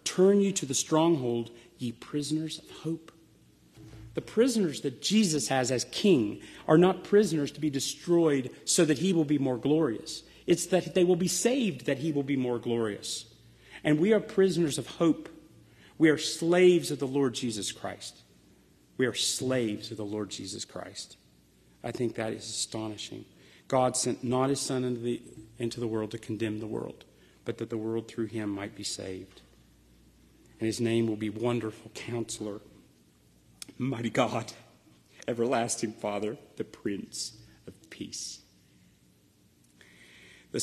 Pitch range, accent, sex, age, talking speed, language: 110-145 Hz, American, male, 40-59, 155 wpm, English